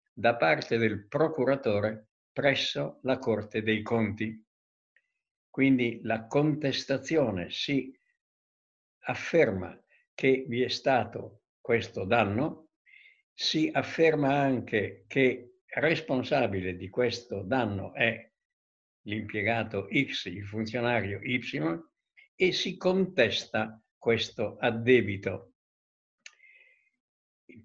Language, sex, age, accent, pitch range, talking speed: Italian, male, 60-79, native, 110-150 Hz, 85 wpm